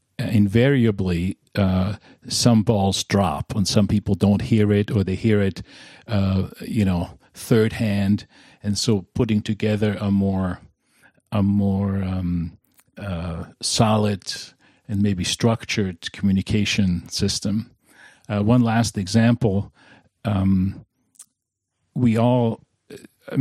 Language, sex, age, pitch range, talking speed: English, male, 50-69, 95-115 Hz, 115 wpm